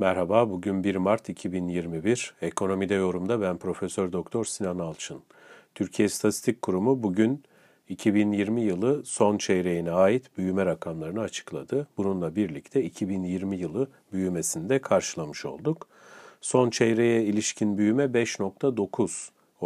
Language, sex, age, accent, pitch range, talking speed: Turkish, male, 40-59, native, 90-125 Hz, 110 wpm